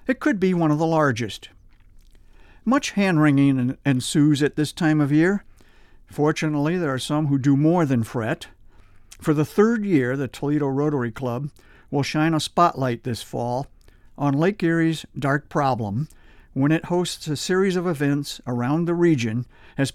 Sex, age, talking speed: male, 50-69, 160 wpm